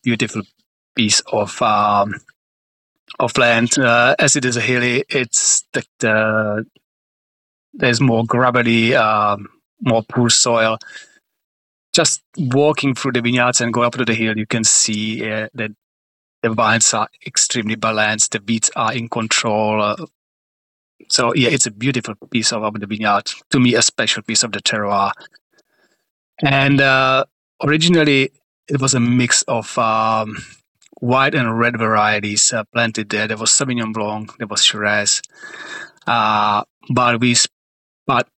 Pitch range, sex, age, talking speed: 110-125 Hz, male, 30-49, 145 wpm